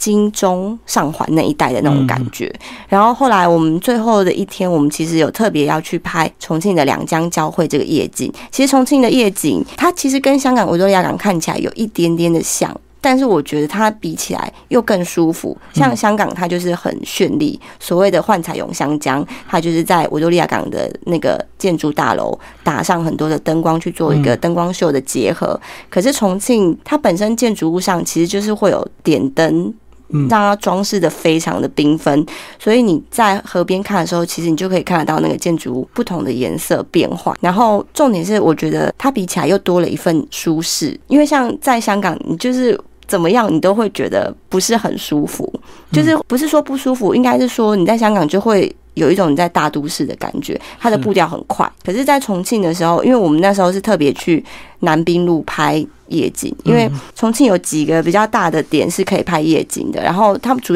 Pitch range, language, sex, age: 160-215 Hz, Chinese, female, 30-49